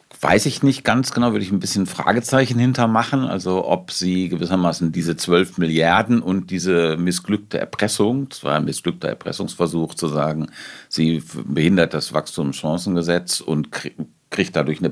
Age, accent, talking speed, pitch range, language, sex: 50-69, German, 145 wpm, 85-115 Hz, German, male